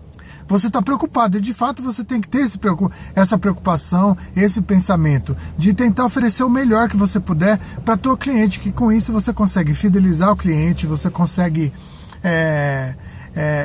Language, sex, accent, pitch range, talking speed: Portuguese, male, Brazilian, 175-220 Hz, 165 wpm